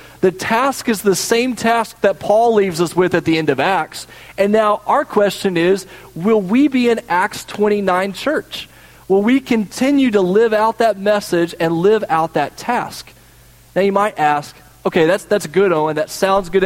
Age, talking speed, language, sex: 40-59, 190 wpm, English, male